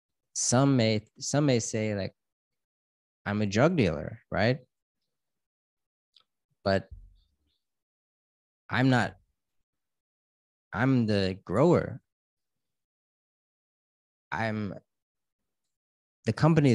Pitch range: 95-110 Hz